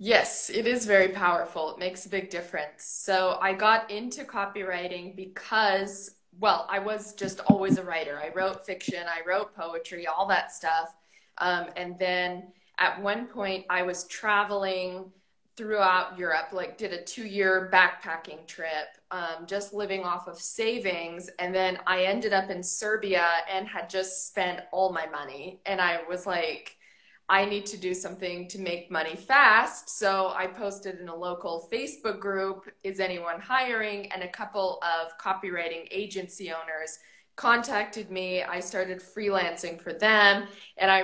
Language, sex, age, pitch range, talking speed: English, female, 20-39, 175-200 Hz, 160 wpm